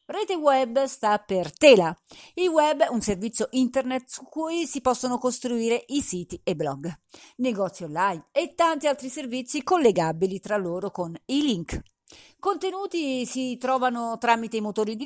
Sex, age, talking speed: female, 50-69, 155 wpm